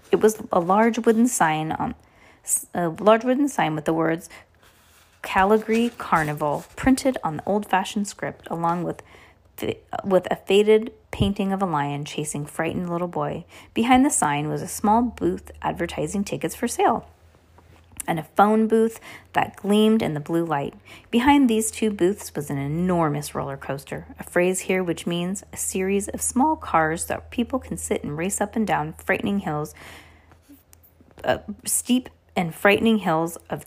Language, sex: English, female